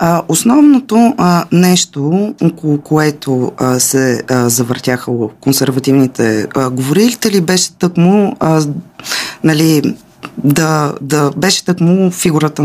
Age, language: 20-39, Bulgarian